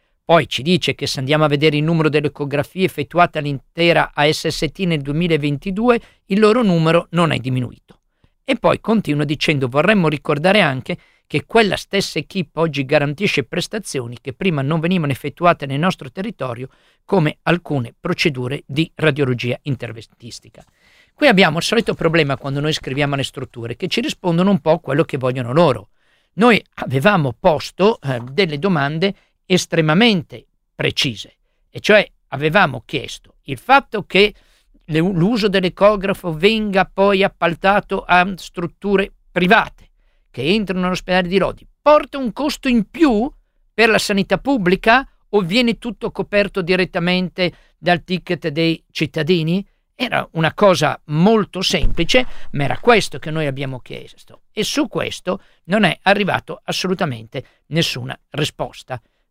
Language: Italian